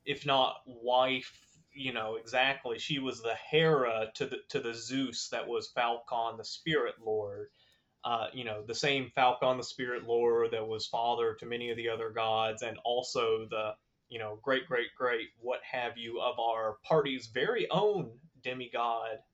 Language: English